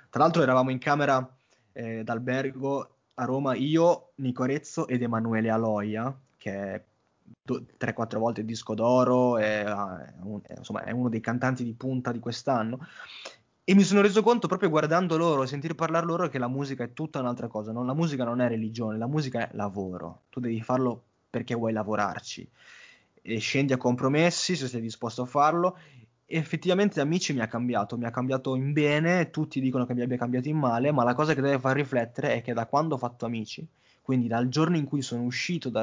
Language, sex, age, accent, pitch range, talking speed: Italian, male, 20-39, native, 115-145 Hz, 200 wpm